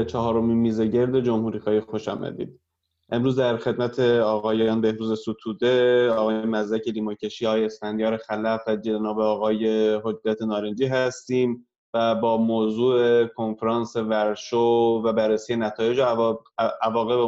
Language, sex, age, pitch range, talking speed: Persian, male, 20-39, 110-125 Hz, 125 wpm